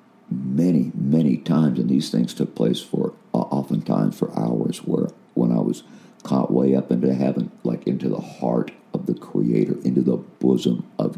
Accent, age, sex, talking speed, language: American, 60-79, male, 175 wpm, English